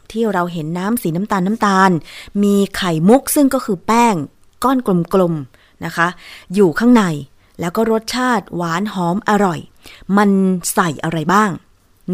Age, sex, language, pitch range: 20-39, female, Thai, 165-210 Hz